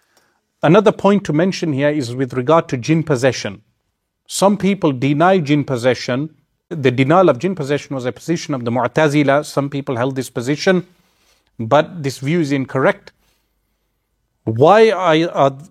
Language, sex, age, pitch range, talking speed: English, male, 40-59, 130-160 Hz, 150 wpm